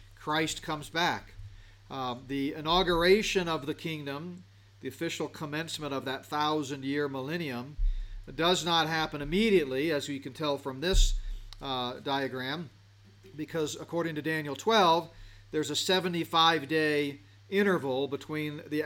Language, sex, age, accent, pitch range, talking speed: English, male, 40-59, American, 120-155 Hz, 125 wpm